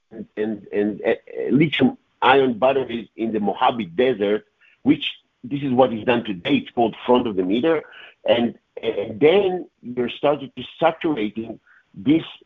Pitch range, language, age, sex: 110-180 Hz, English, 50-69, male